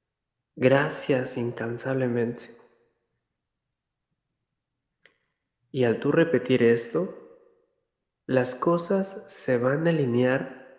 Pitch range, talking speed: 125-150 Hz, 70 wpm